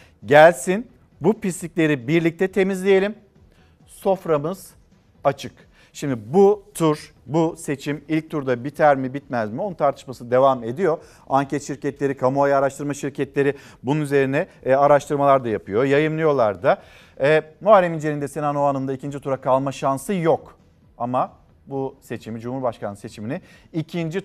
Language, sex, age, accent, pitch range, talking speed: Turkish, male, 50-69, native, 135-170 Hz, 130 wpm